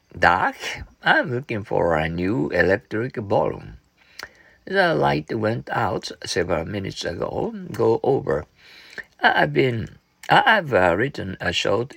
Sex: male